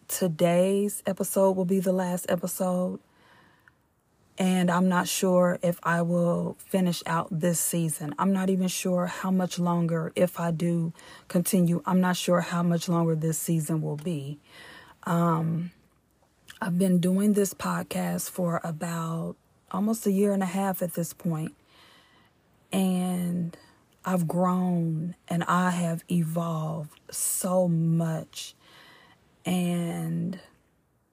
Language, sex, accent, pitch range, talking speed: English, female, American, 165-185 Hz, 125 wpm